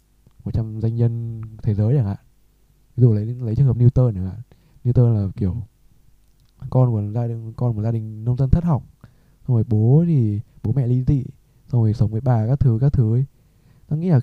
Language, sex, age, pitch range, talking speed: Vietnamese, male, 20-39, 110-135 Hz, 230 wpm